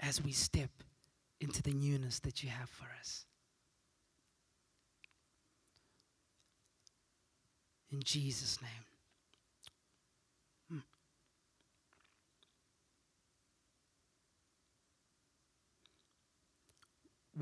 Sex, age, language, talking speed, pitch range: male, 30-49, English, 50 wpm, 155-250 Hz